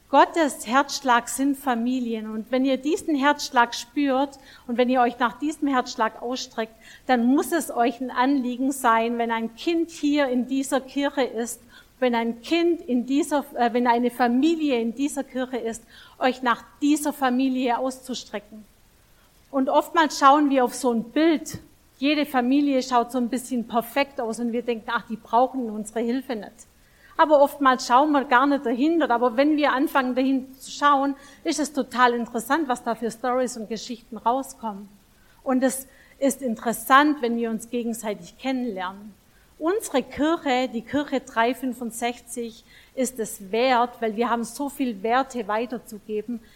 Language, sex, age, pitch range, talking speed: German, female, 50-69, 230-275 Hz, 160 wpm